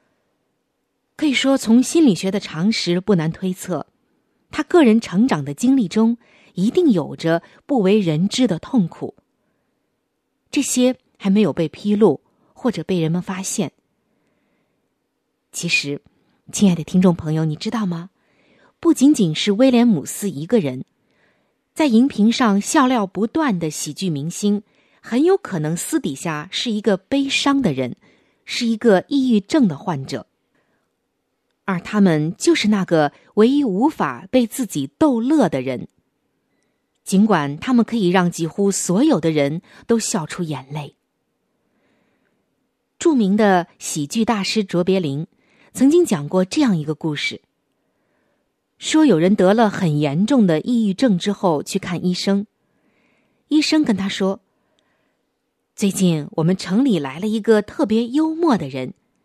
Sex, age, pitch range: female, 20-39, 175-245 Hz